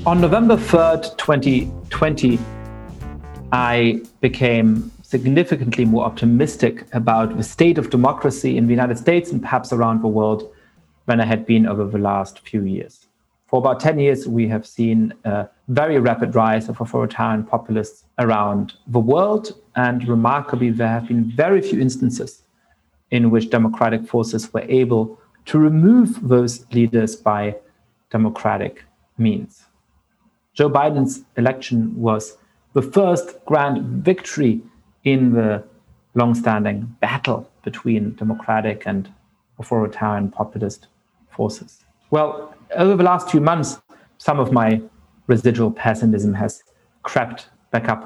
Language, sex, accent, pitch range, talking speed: English, male, German, 110-135 Hz, 130 wpm